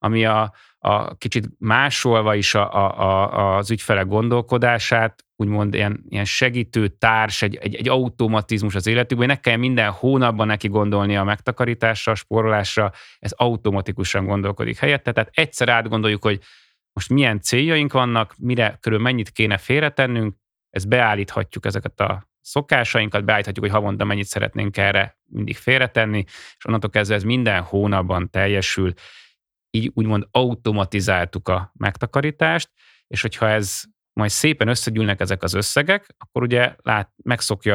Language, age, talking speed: Hungarian, 30-49, 140 wpm